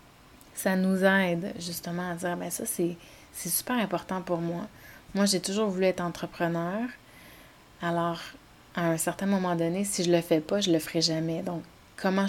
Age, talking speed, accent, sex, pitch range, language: 30-49, 185 wpm, Canadian, female, 170-195 Hz, French